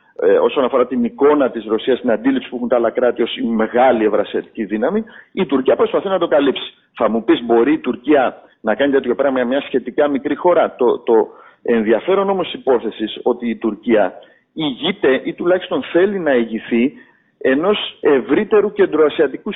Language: Greek